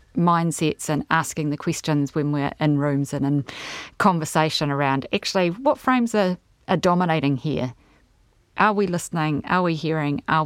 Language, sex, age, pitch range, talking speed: English, female, 30-49, 145-180 Hz, 155 wpm